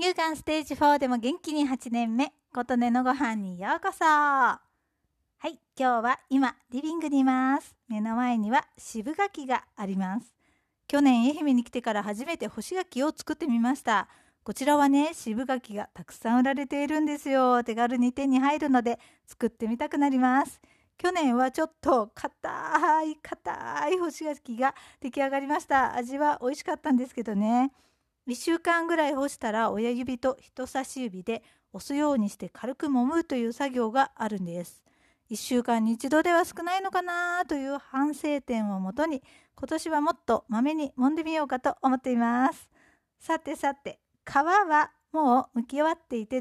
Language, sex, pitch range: Japanese, female, 245-300 Hz